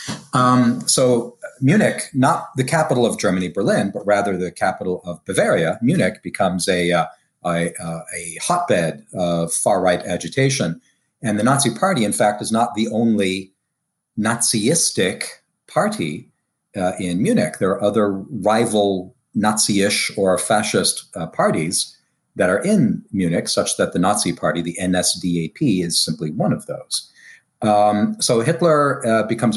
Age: 40-59